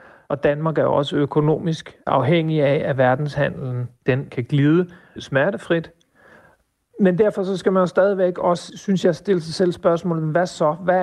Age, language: 40-59, Danish